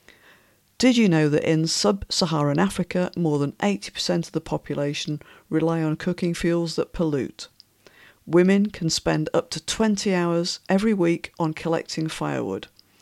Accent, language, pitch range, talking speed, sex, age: British, English, 155-185 Hz, 145 wpm, female, 50-69